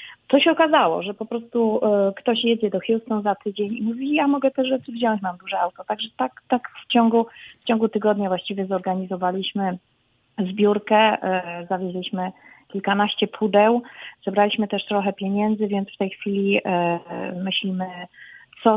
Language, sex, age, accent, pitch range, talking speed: Polish, female, 30-49, native, 180-215 Hz, 145 wpm